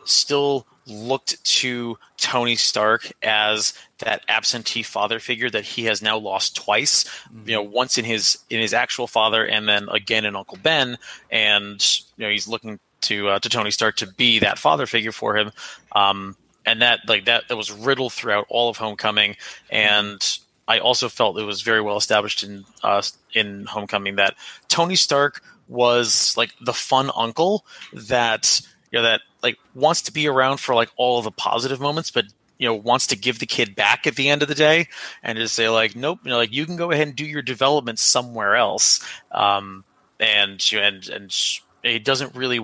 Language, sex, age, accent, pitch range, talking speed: English, male, 20-39, American, 105-135 Hz, 195 wpm